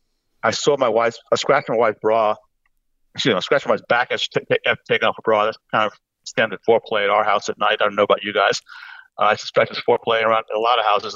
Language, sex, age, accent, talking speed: English, male, 60-79, American, 255 wpm